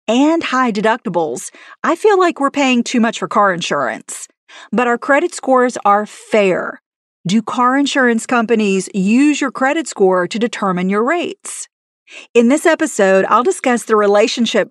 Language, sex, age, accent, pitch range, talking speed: English, female, 40-59, American, 200-255 Hz, 155 wpm